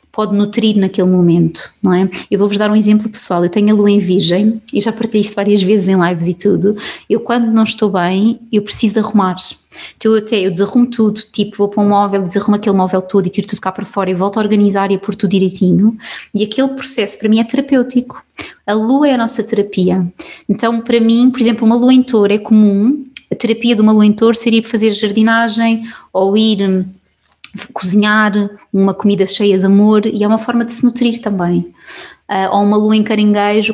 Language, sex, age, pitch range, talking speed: Portuguese, female, 20-39, 195-220 Hz, 220 wpm